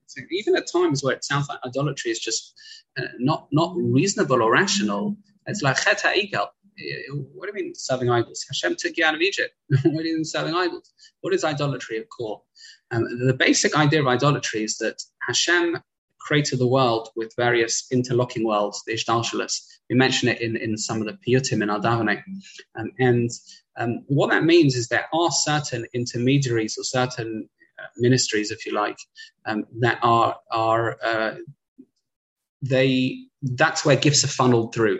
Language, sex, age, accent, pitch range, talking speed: English, male, 20-39, British, 115-160 Hz, 175 wpm